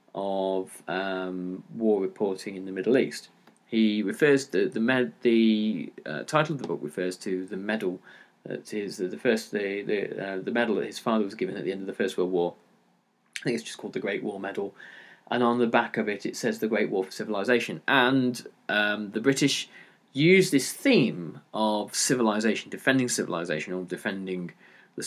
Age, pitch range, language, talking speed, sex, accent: 30-49, 90-115 Hz, English, 195 wpm, male, British